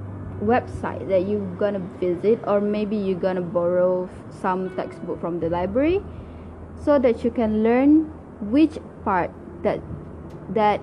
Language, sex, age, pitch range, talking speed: English, female, 20-39, 175-240 Hz, 135 wpm